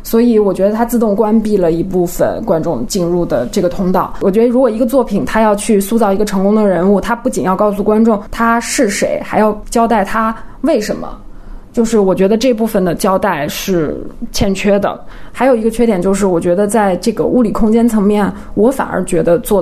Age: 20-39